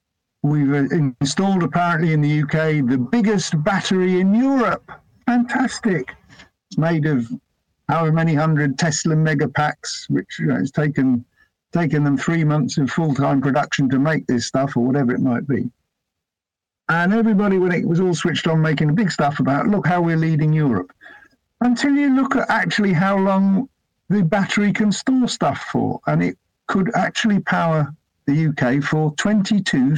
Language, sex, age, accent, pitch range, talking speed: English, male, 50-69, British, 140-190 Hz, 160 wpm